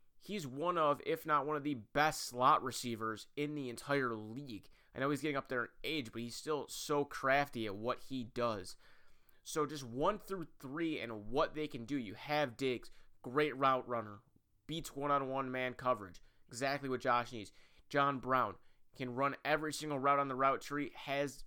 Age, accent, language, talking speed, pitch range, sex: 30-49, American, English, 190 wpm, 115-140 Hz, male